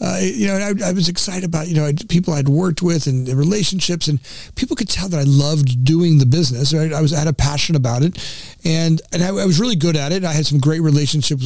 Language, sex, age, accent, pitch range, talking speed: English, male, 40-59, American, 135-170 Hz, 260 wpm